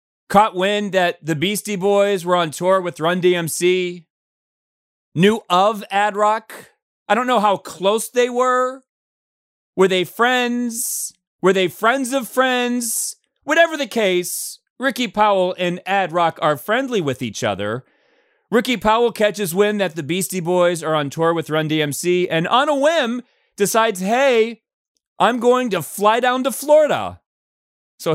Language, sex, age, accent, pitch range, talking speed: English, male, 30-49, American, 155-225 Hz, 150 wpm